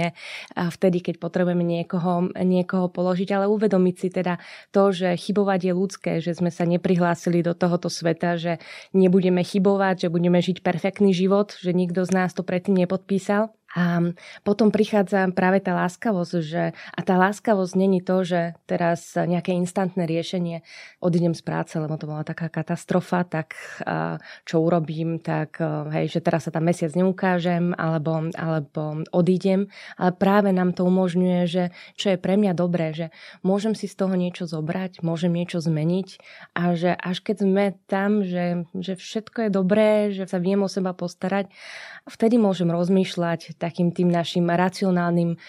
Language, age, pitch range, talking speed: Slovak, 20-39, 170-190 Hz, 160 wpm